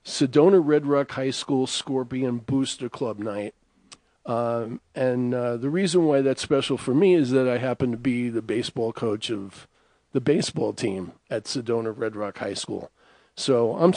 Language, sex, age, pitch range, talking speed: English, male, 50-69, 120-145 Hz, 170 wpm